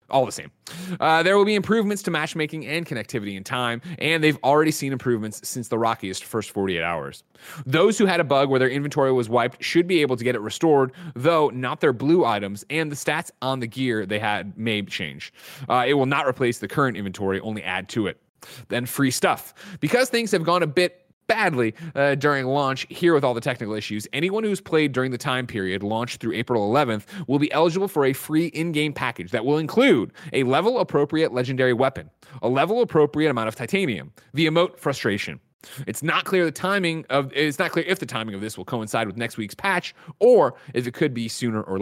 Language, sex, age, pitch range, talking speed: English, male, 30-49, 115-160 Hz, 215 wpm